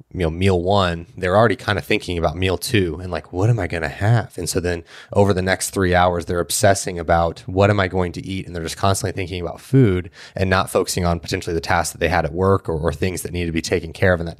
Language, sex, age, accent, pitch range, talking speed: English, male, 20-39, American, 90-105 Hz, 275 wpm